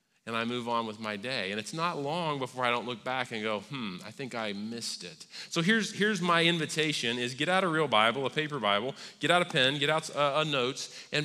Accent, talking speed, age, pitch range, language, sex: American, 250 wpm, 40-59, 120-155 Hz, English, male